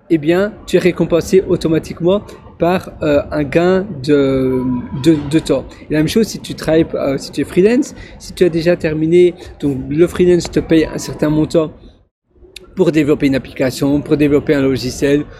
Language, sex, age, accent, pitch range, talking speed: French, male, 40-59, French, 140-170 Hz, 185 wpm